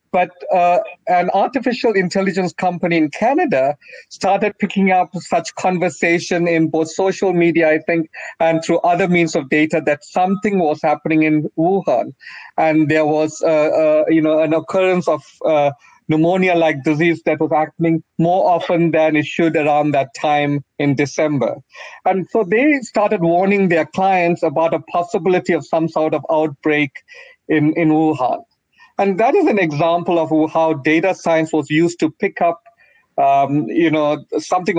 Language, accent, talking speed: English, Indian, 160 wpm